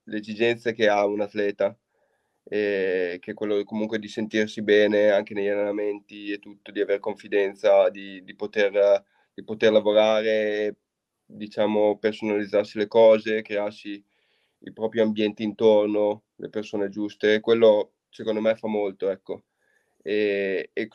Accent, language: native, Italian